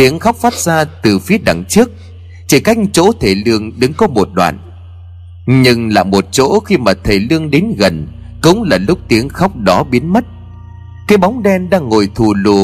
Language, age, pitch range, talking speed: Vietnamese, 30-49, 90-125 Hz, 200 wpm